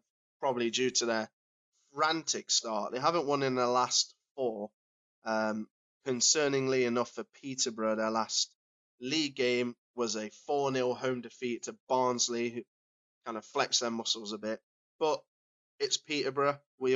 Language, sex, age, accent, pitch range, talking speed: English, male, 20-39, British, 110-135 Hz, 145 wpm